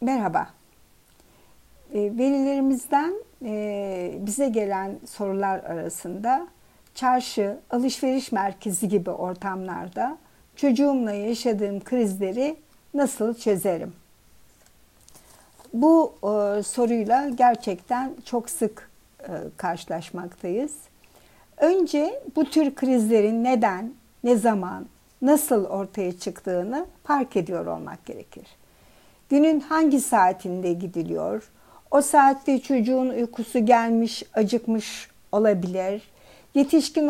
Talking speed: 80 wpm